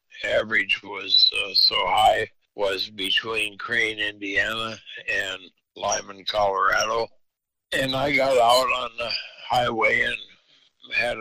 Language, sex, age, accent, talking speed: English, male, 60-79, American, 110 wpm